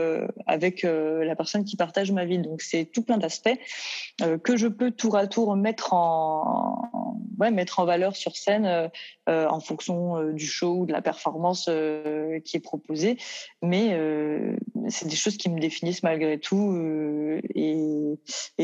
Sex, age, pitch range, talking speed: female, 20-39, 160-195 Hz, 170 wpm